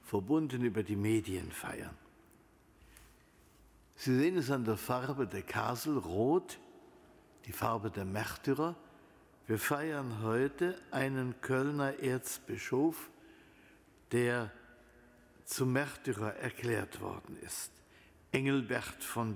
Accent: German